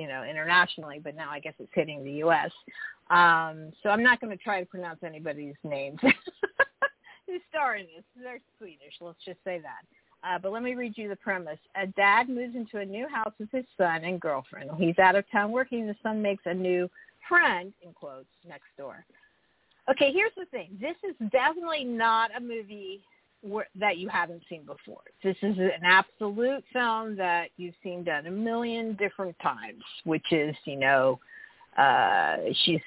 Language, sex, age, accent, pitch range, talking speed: English, female, 50-69, American, 165-235 Hz, 185 wpm